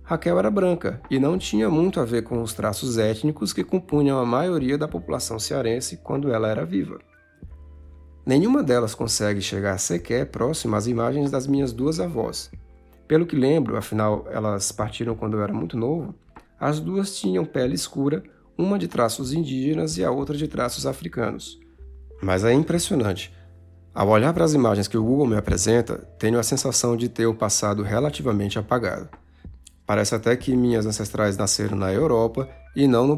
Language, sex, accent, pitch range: Portuguese, male, Brazilian, 105-140 Hz